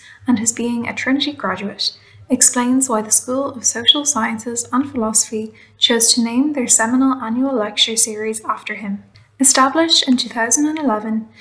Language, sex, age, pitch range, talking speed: English, female, 10-29, 215-260 Hz, 145 wpm